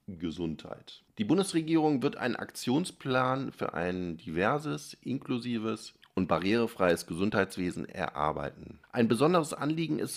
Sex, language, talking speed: male, German, 105 wpm